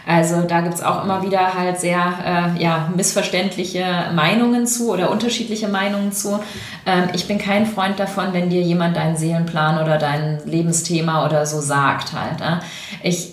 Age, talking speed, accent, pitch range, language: 30-49, 170 wpm, German, 155-190 Hz, German